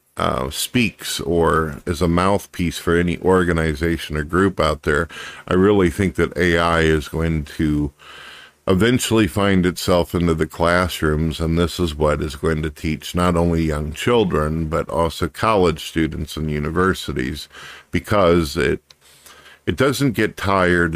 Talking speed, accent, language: 145 wpm, American, English